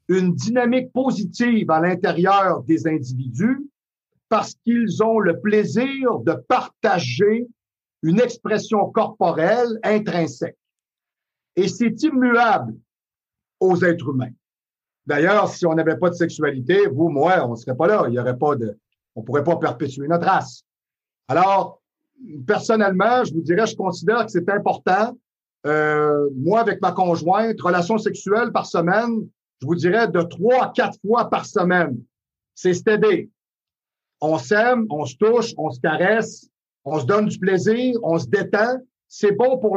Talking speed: 145 wpm